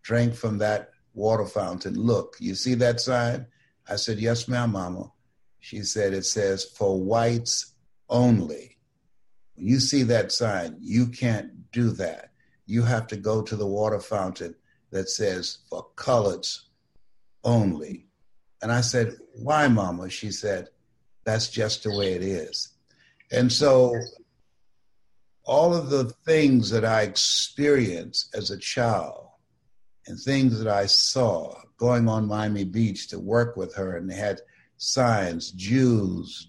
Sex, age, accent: male, 60-79, American